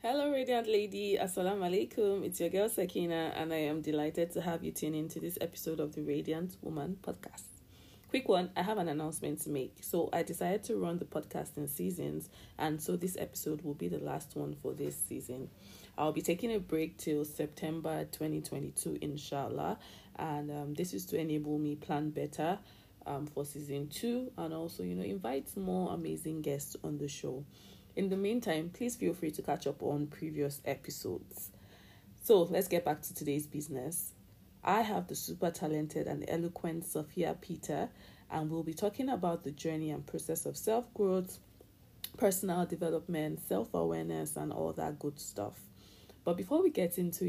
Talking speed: 180 wpm